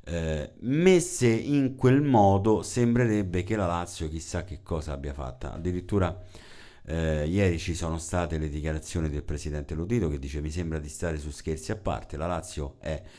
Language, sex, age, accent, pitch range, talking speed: Italian, male, 50-69, native, 80-110 Hz, 175 wpm